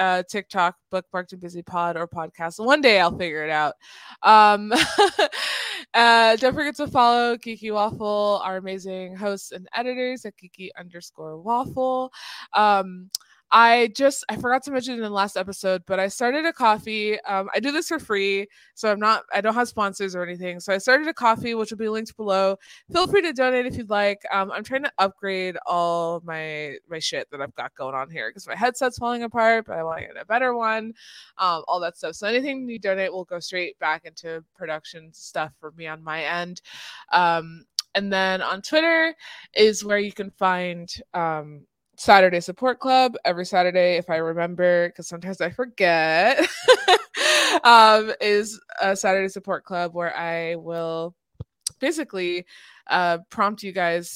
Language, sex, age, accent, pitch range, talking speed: English, female, 20-39, American, 175-230 Hz, 185 wpm